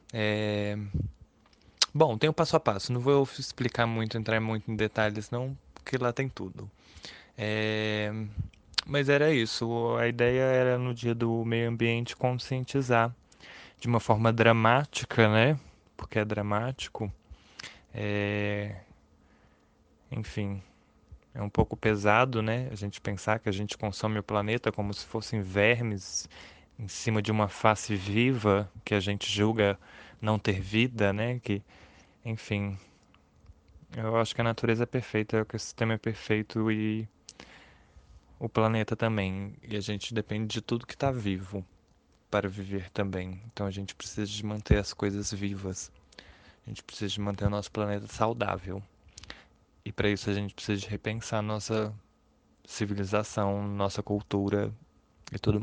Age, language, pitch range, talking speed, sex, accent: 20-39, Portuguese, 100-115 Hz, 150 wpm, male, Brazilian